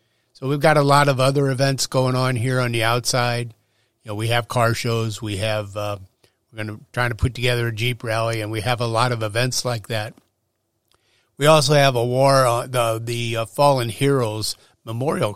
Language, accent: English, American